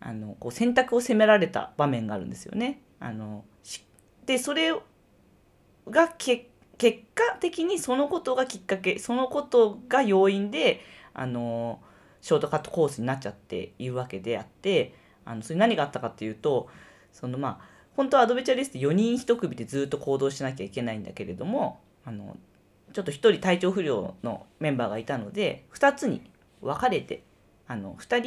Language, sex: Japanese, female